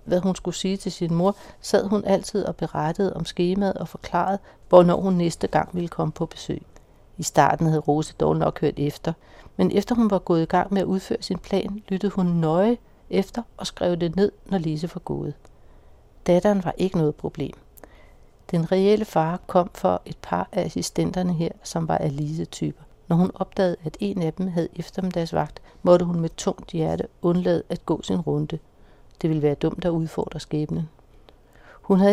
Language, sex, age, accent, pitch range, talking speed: Danish, female, 60-79, native, 160-190 Hz, 190 wpm